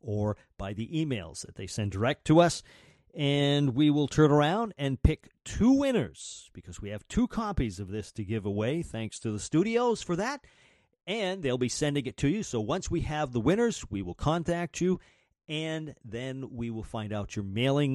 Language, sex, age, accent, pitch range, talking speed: English, male, 40-59, American, 105-150 Hz, 200 wpm